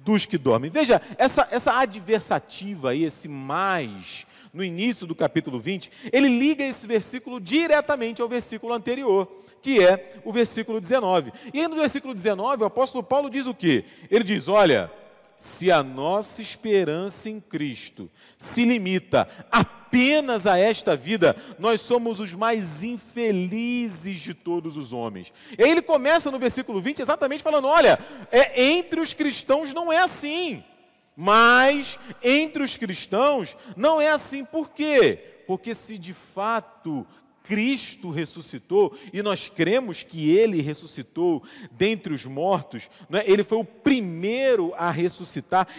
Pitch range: 170-250 Hz